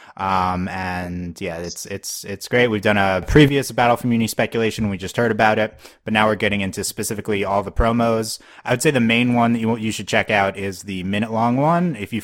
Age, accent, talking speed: 20-39, American, 235 wpm